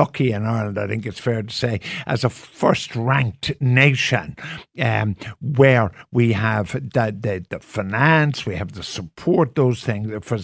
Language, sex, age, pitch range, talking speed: English, male, 60-79, 115-150 Hz, 165 wpm